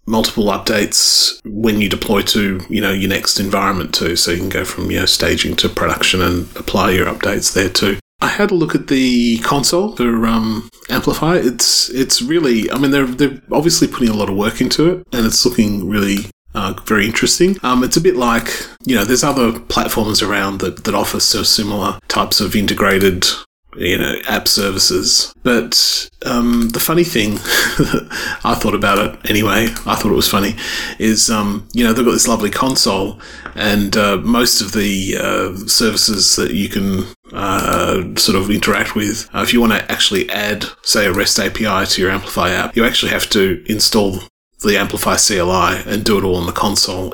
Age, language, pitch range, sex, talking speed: 30-49, English, 100-120 Hz, male, 195 wpm